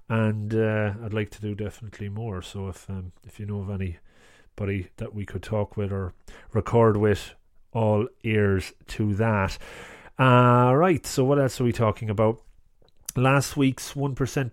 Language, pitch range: English, 100-120 Hz